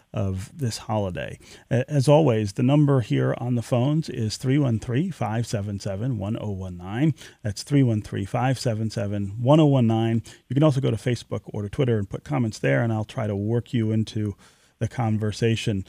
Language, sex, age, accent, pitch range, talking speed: English, male, 40-59, American, 110-135 Hz, 155 wpm